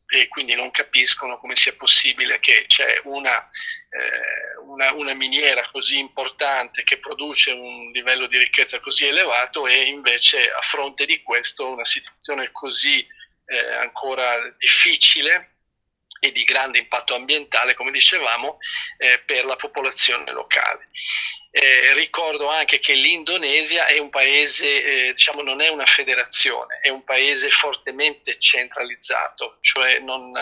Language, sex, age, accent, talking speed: Italian, male, 40-59, native, 130 wpm